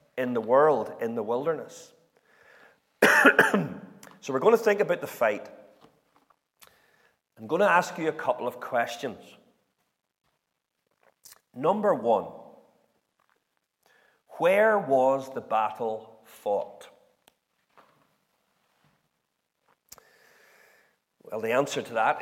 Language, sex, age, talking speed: English, male, 40-59, 95 wpm